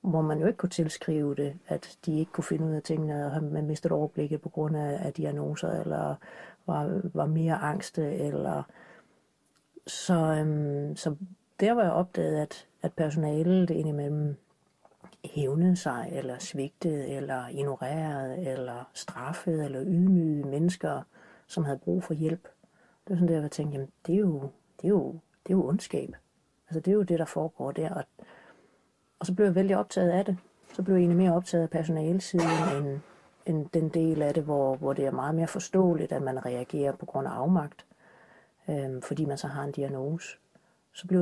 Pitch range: 150-180 Hz